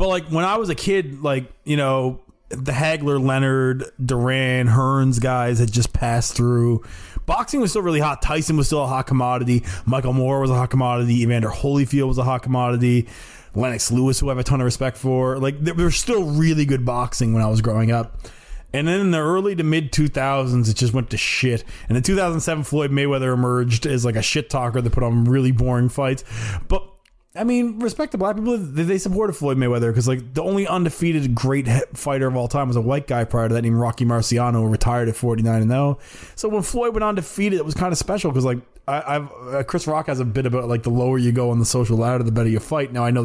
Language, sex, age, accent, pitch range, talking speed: English, male, 20-39, American, 125-160 Hz, 235 wpm